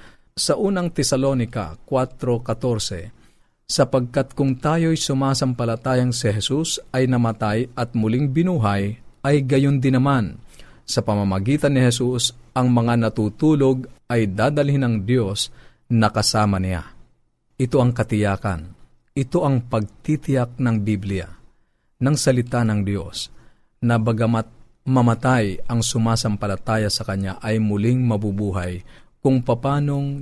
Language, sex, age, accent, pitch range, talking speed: Filipino, male, 50-69, native, 105-130 Hz, 115 wpm